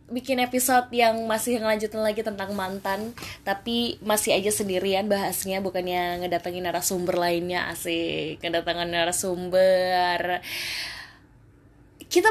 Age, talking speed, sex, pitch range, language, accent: 20-39, 100 wpm, female, 175-235 Hz, Indonesian, native